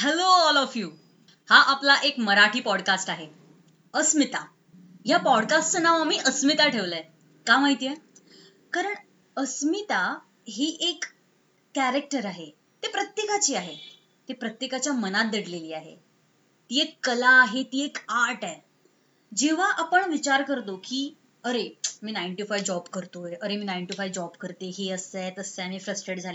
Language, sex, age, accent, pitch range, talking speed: Marathi, female, 20-39, native, 195-295 Hz, 95 wpm